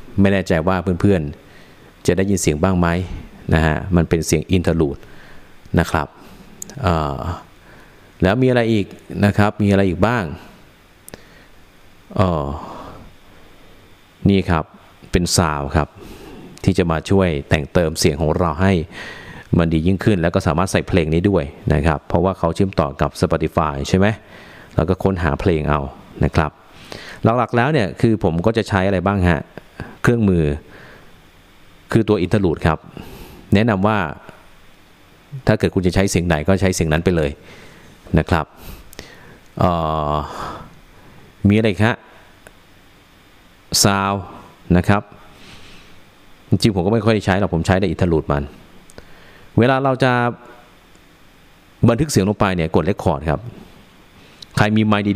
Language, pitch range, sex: Thai, 80-100 Hz, male